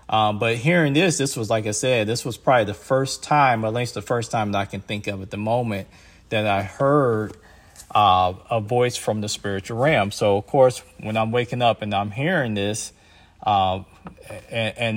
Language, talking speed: English, 210 wpm